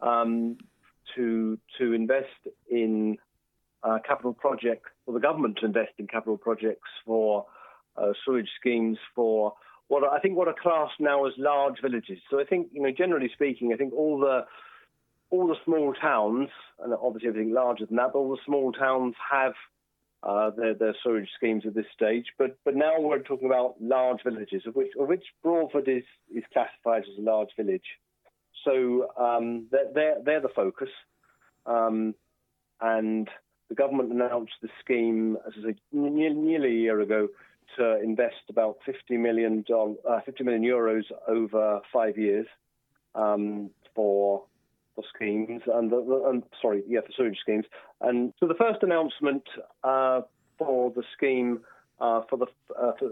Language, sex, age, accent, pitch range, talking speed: English, male, 40-59, British, 110-135 Hz, 165 wpm